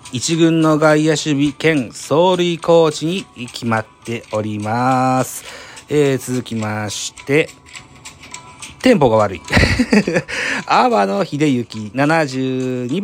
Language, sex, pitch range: Japanese, male, 115-160 Hz